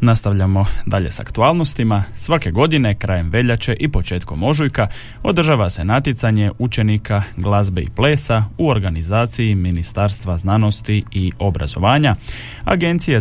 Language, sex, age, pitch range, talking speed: Croatian, male, 30-49, 100-125 Hz, 115 wpm